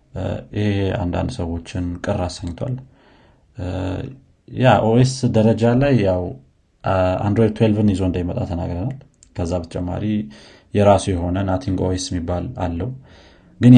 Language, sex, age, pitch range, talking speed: Amharic, male, 30-49, 90-115 Hz, 120 wpm